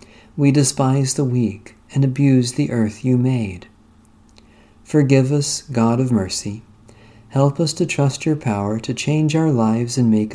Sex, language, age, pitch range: male, English, 40-59, 105-135 Hz